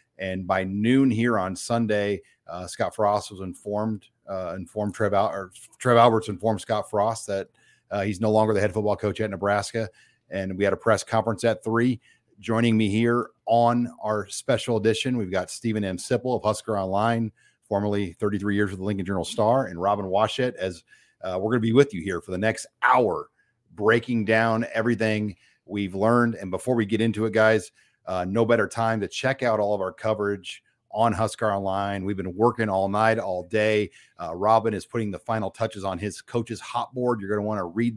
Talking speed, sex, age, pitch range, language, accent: 205 wpm, male, 40-59, 100-115 Hz, English, American